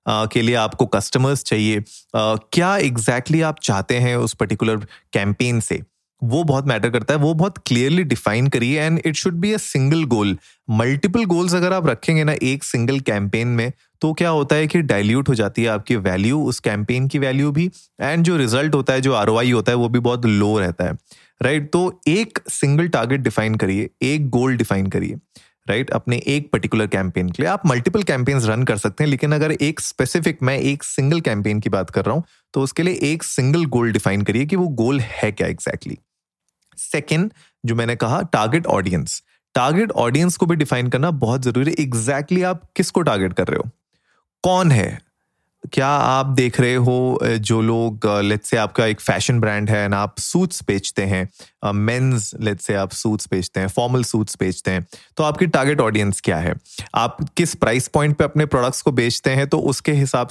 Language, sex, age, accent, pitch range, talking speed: Hindi, male, 30-49, native, 110-155 Hz, 200 wpm